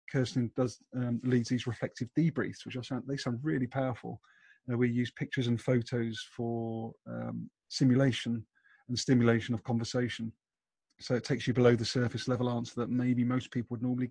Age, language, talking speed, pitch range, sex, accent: 30-49, English, 180 wpm, 110-125 Hz, male, British